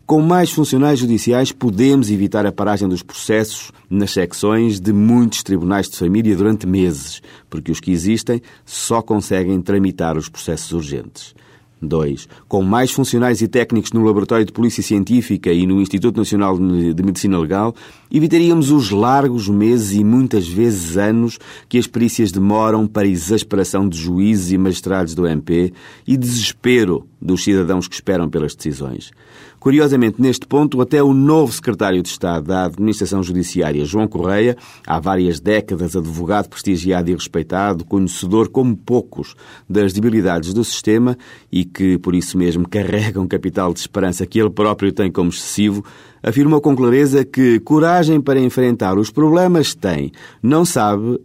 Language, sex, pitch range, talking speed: Portuguese, male, 95-120 Hz, 155 wpm